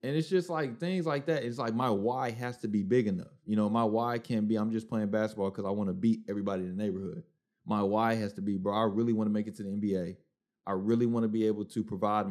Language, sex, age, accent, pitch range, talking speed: English, male, 30-49, American, 105-150 Hz, 285 wpm